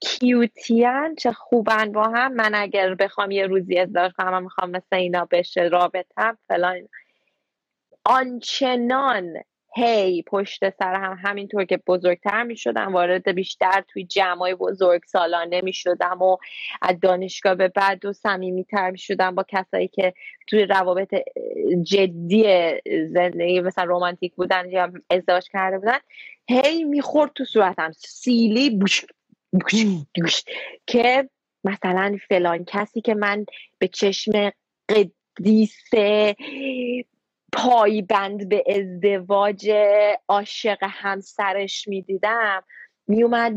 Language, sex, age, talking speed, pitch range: Persian, female, 20-39, 115 wpm, 180-215 Hz